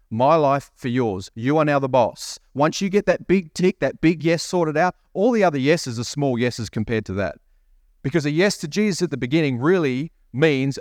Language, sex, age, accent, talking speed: English, male, 30-49, Australian, 220 wpm